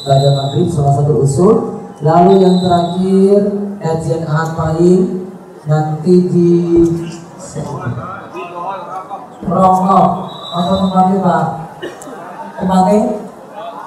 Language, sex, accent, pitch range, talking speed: Indonesian, male, native, 150-185 Hz, 75 wpm